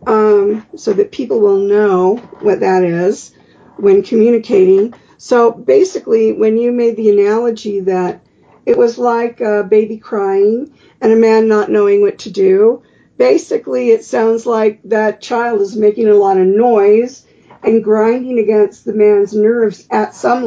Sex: female